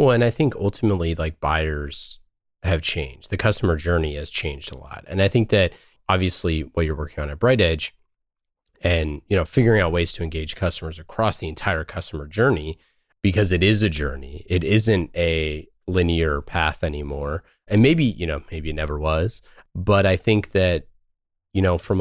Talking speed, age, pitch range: 185 wpm, 30-49, 80-100 Hz